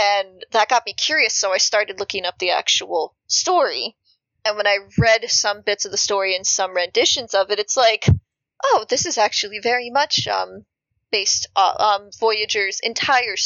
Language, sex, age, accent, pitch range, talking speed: English, female, 30-49, American, 185-220 Hz, 185 wpm